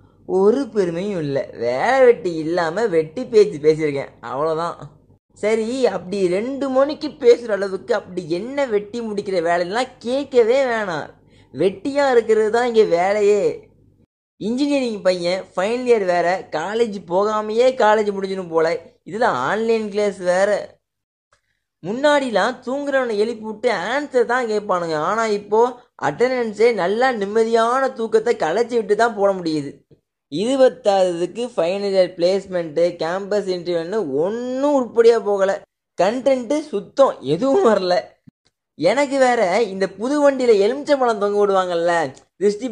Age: 20-39